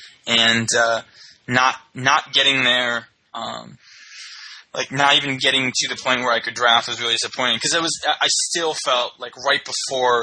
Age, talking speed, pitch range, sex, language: 20-39, 175 wpm, 115-130 Hz, male, English